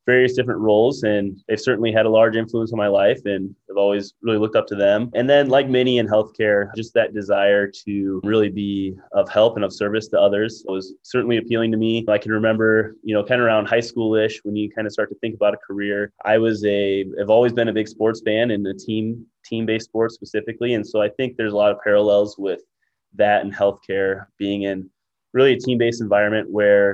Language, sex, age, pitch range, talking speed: English, male, 20-39, 100-115 Hz, 225 wpm